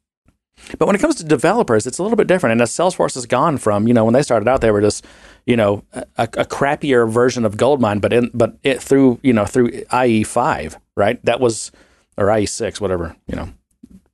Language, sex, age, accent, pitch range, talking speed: English, male, 30-49, American, 110-140 Hz, 225 wpm